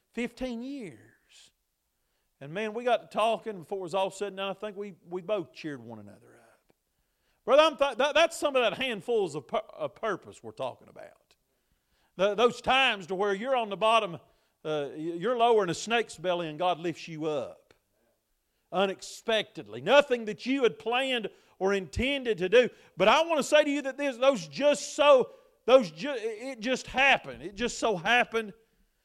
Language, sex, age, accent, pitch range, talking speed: English, male, 40-59, American, 185-270 Hz, 185 wpm